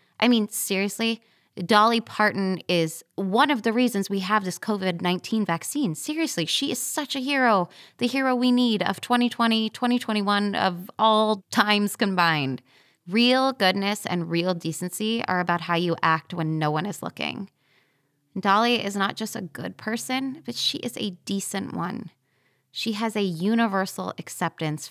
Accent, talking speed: American, 155 wpm